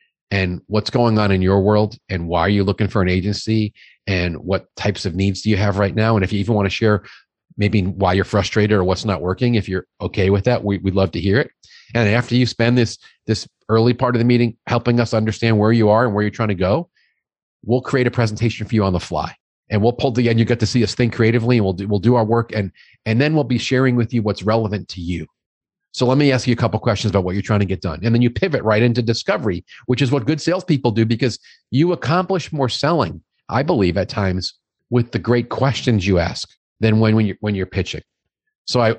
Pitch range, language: 100-120 Hz, English